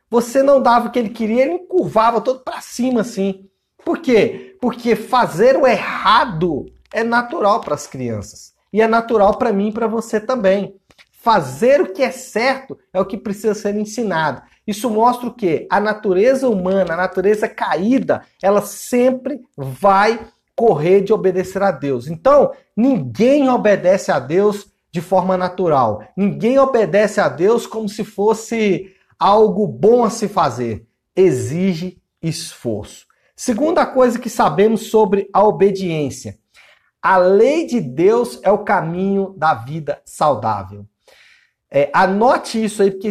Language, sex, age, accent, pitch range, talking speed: Portuguese, male, 50-69, Brazilian, 180-235 Hz, 150 wpm